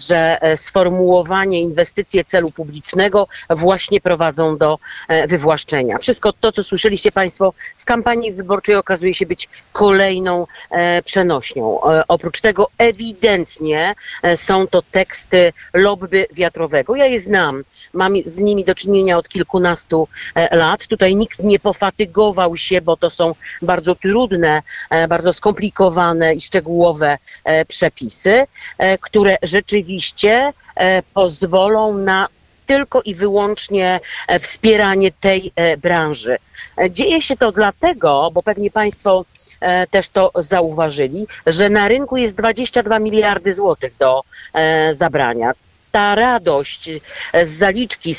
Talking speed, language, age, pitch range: 110 wpm, Polish, 50-69, 170-205 Hz